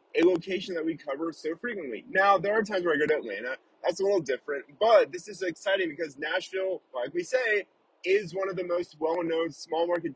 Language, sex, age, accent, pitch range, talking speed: English, male, 30-49, American, 165-265 Hz, 220 wpm